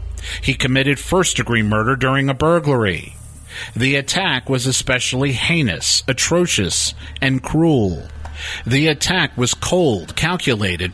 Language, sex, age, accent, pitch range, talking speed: English, male, 50-69, American, 95-140 Hz, 110 wpm